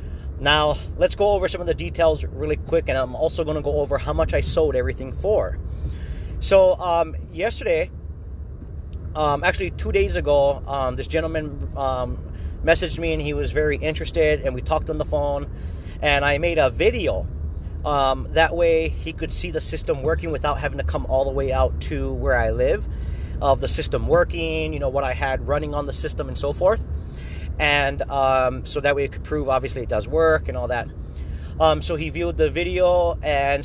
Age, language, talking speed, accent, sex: 30-49, English, 200 wpm, American, male